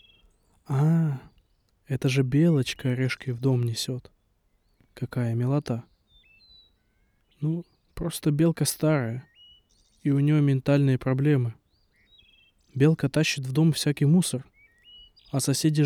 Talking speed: 100 wpm